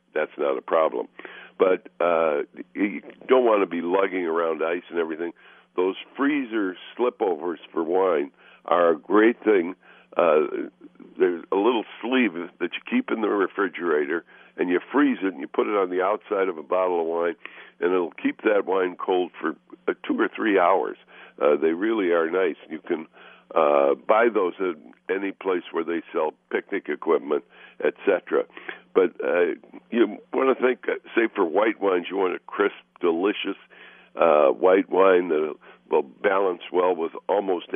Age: 60-79